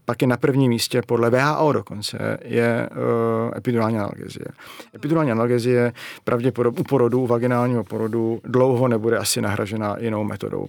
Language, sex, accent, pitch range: Czech, male, native, 115-135 Hz